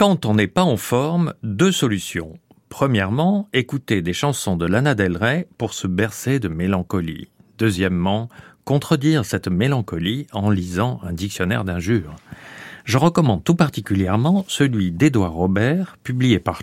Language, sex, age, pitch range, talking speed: French, male, 50-69, 95-140 Hz, 140 wpm